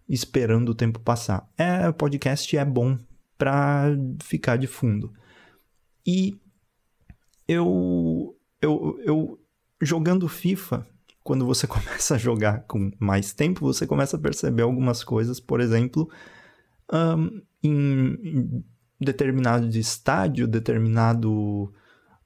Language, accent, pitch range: Portuguese, Brazilian, 115-150 Hz